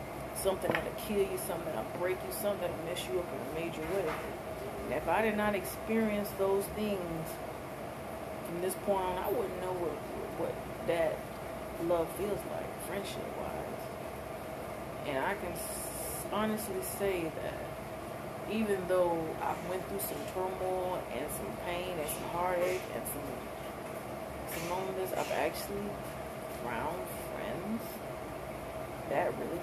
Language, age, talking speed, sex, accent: English, 30-49, 140 wpm, female, American